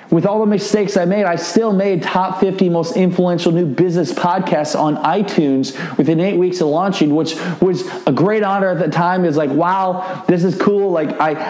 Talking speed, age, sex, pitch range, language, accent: 210 wpm, 20-39, male, 155-185 Hz, English, American